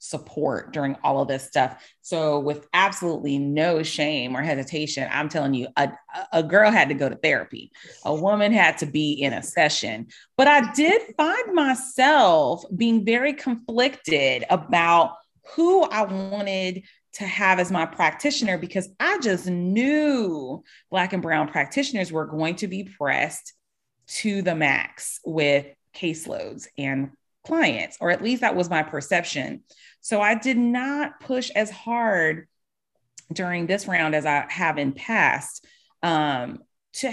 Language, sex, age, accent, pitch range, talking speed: English, female, 30-49, American, 155-255 Hz, 150 wpm